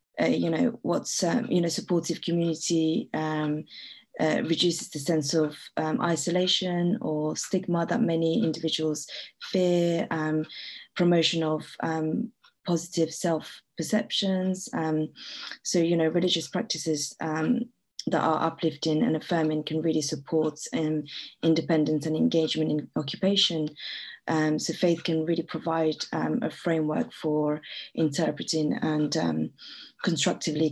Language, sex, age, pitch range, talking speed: English, female, 20-39, 155-170 Hz, 125 wpm